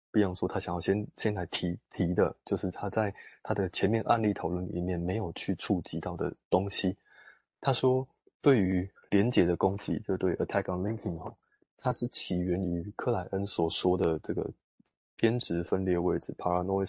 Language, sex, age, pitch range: Chinese, male, 20-39, 90-110 Hz